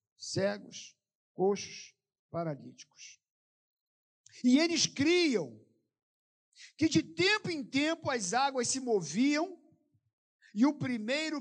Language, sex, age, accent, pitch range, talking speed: Portuguese, male, 50-69, Brazilian, 235-310 Hz, 95 wpm